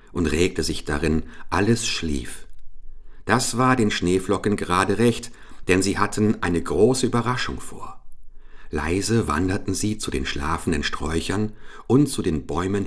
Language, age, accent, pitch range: English, 50-69, German, 85-115 Hz